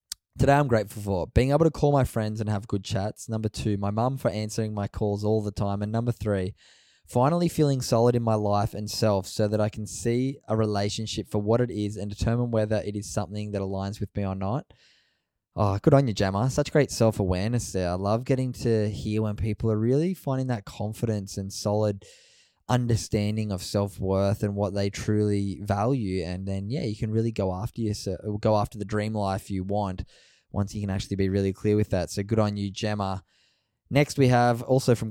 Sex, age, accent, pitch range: male, 10-29, Australian, 100-115 Hz